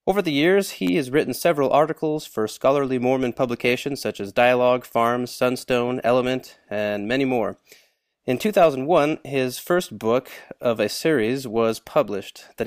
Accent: American